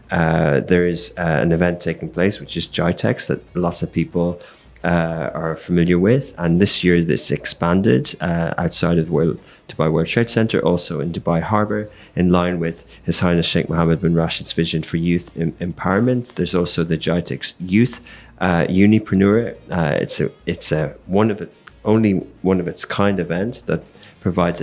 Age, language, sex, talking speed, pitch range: 30-49, English, male, 180 wpm, 85-100 Hz